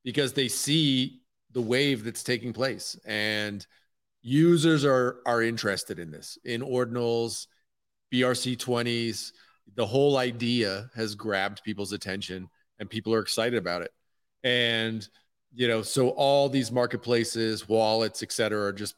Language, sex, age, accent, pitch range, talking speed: English, male, 30-49, American, 105-125 Hz, 135 wpm